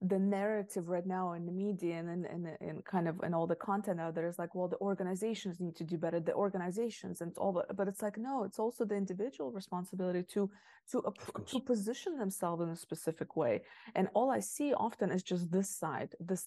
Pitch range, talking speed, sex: 170-205 Hz, 220 wpm, female